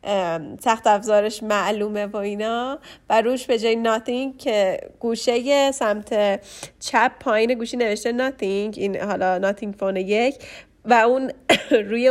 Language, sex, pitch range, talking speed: Persian, female, 205-250 Hz, 130 wpm